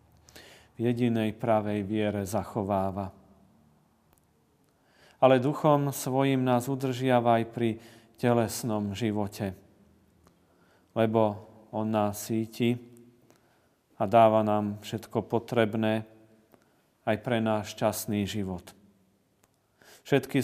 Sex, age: male, 40-59